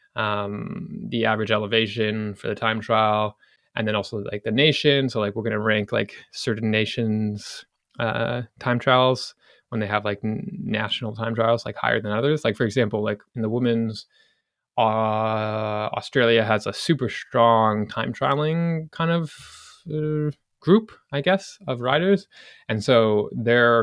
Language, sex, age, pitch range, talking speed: English, male, 20-39, 110-135 Hz, 160 wpm